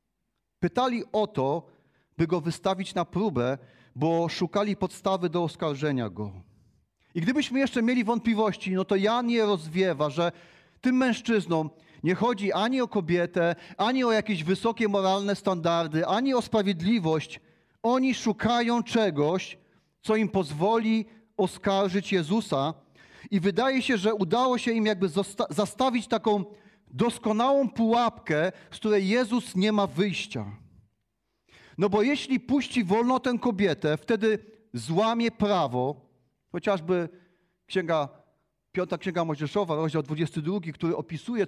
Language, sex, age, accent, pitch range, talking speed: Polish, male, 40-59, native, 170-230 Hz, 125 wpm